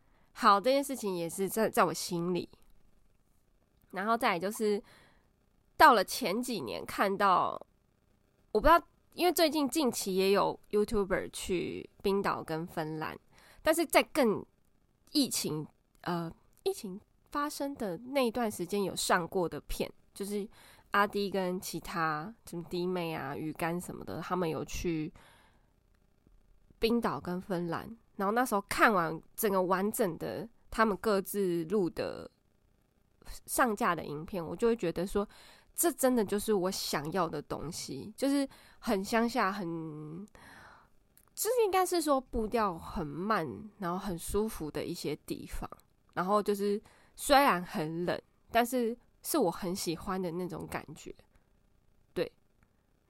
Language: Chinese